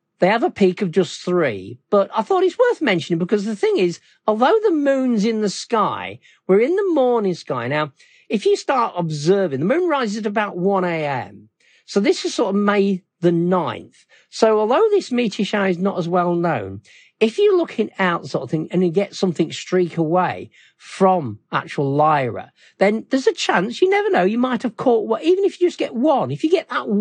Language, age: English, 50-69